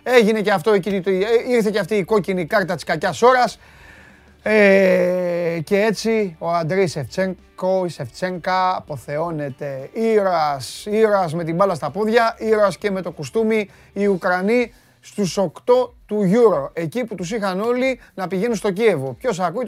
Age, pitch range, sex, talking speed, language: 30-49, 150-215 Hz, male, 155 wpm, Greek